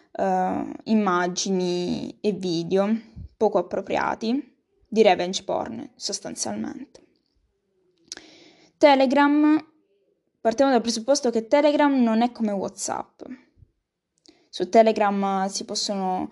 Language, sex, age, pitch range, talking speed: Italian, female, 10-29, 195-255 Hz, 90 wpm